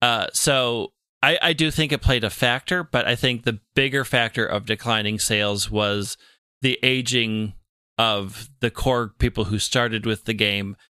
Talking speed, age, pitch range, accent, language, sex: 170 wpm, 30-49, 105-125 Hz, American, English, male